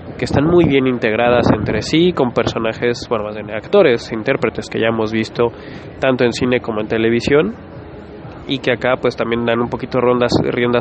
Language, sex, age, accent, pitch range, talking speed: Spanish, male, 20-39, Mexican, 115-135 Hz, 180 wpm